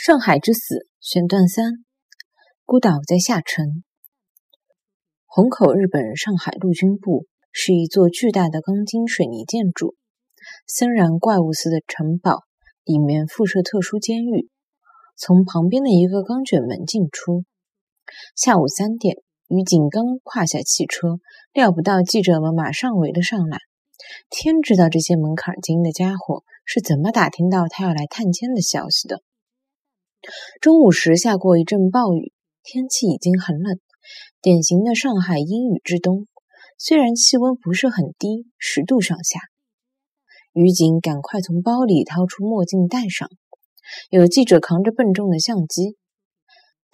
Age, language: 20-39, Chinese